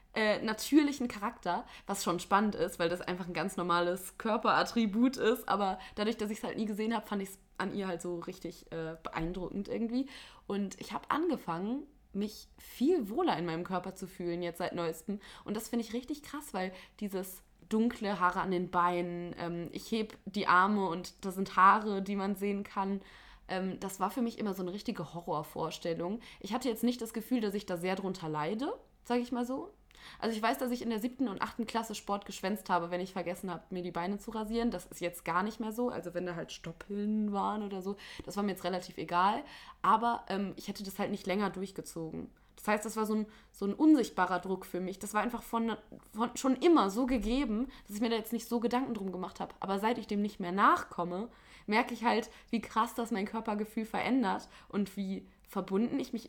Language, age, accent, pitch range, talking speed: German, 20-39, German, 185-230 Hz, 220 wpm